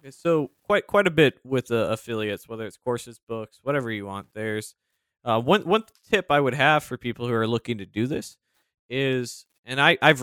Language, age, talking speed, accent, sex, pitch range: English, 20-39, 210 wpm, American, male, 110-135 Hz